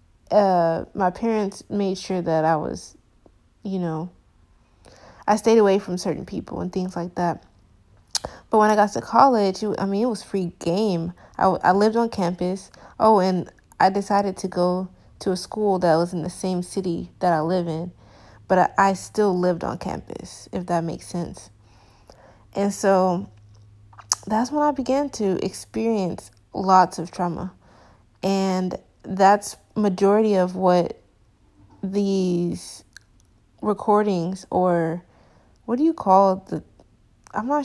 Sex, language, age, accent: female, English, 20-39, American